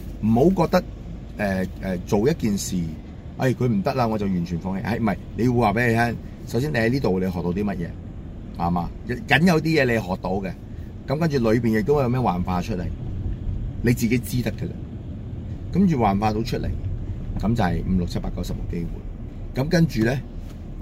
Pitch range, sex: 90-120 Hz, male